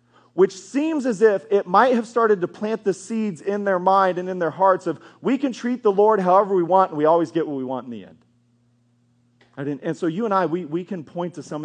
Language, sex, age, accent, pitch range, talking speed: English, male, 30-49, American, 155-205 Hz, 245 wpm